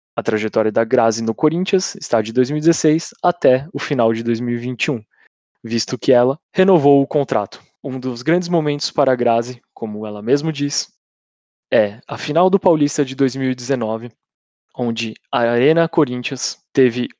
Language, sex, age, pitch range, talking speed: Portuguese, male, 20-39, 120-145 Hz, 150 wpm